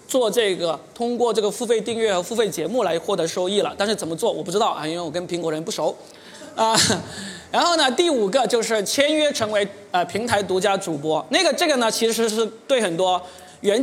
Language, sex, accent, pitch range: Chinese, male, native, 180-240 Hz